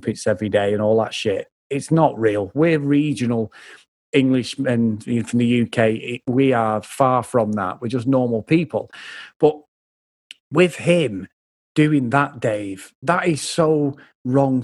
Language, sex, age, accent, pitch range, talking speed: English, male, 40-59, British, 125-170 Hz, 140 wpm